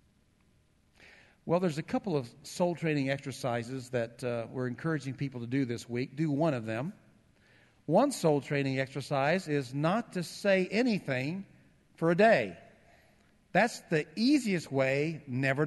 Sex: male